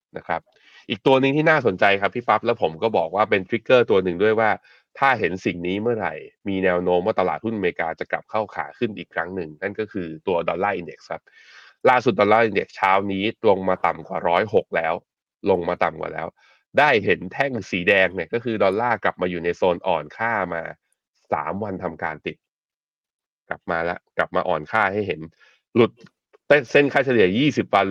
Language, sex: Thai, male